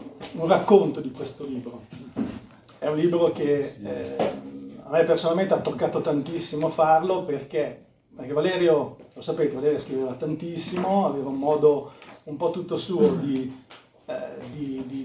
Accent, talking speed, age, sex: native, 130 wpm, 40-59, male